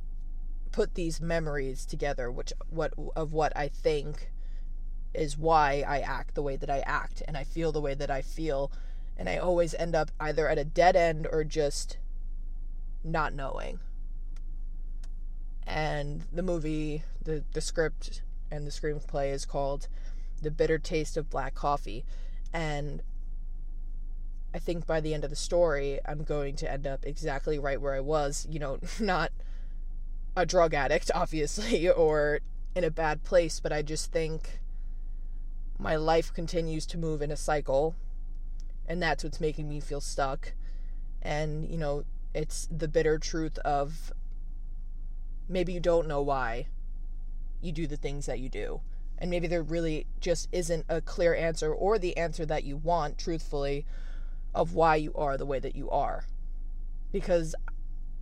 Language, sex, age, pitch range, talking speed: English, female, 20-39, 145-165 Hz, 160 wpm